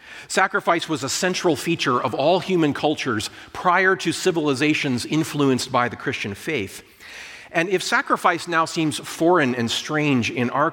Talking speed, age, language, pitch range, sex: 150 wpm, 40-59, English, 110-155 Hz, male